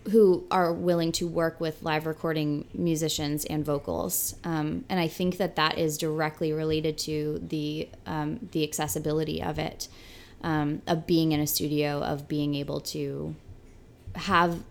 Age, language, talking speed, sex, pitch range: 20-39, English, 155 wpm, female, 145-160 Hz